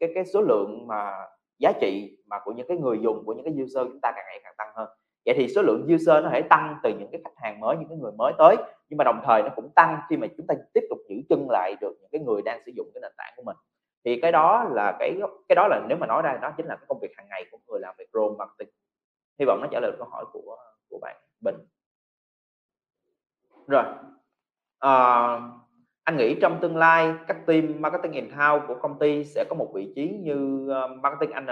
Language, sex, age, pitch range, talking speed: Vietnamese, male, 20-39, 130-190 Hz, 250 wpm